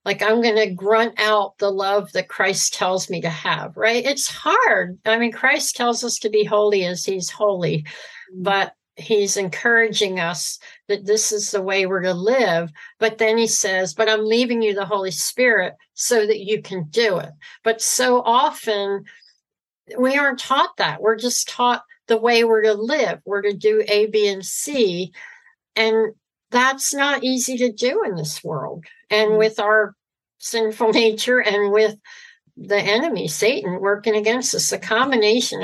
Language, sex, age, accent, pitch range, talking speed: English, female, 60-79, American, 190-230 Hz, 175 wpm